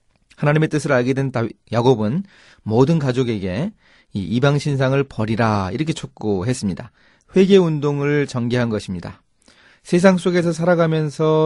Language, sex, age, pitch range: Korean, male, 30-49, 115-155 Hz